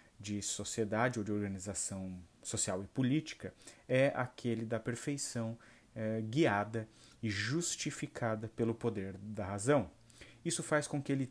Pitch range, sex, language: 105-130 Hz, male, Portuguese